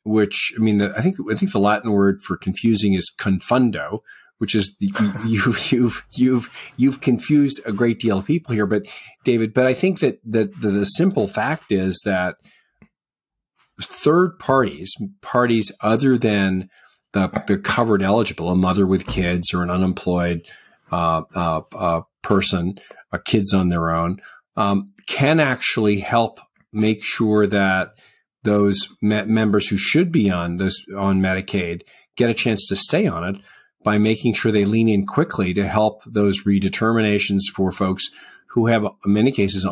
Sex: male